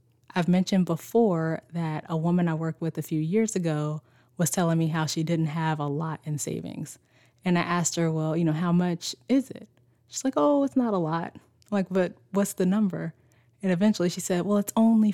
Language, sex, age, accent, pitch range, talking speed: English, female, 20-39, American, 155-185 Hz, 215 wpm